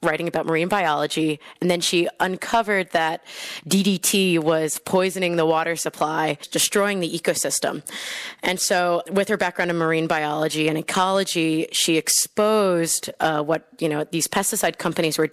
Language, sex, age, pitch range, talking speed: English, female, 20-39, 160-195 Hz, 150 wpm